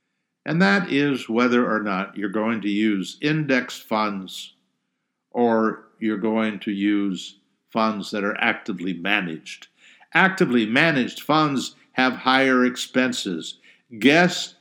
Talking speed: 120 wpm